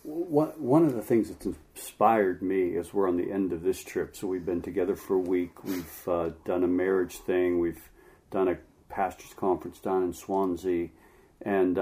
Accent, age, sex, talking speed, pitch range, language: American, 50-69, male, 190 wpm, 95-110 Hz, English